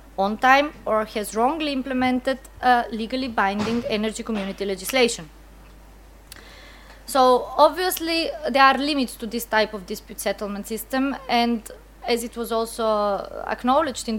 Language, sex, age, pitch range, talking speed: English, female, 20-39, 215-255 Hz, 130 wpm